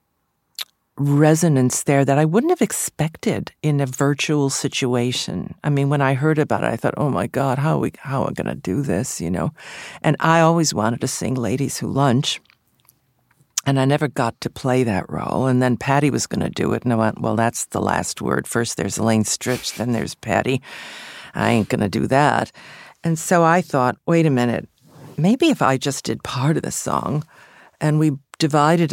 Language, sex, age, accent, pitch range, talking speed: English, female, 50-69, American, 130-155 Hz, 200 wpm